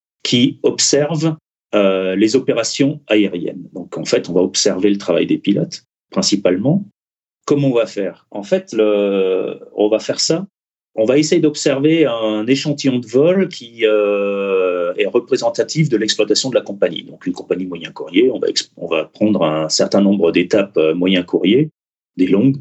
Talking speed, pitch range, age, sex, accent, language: 165 wpm, 95-150 Hz, 40-59, male, French, French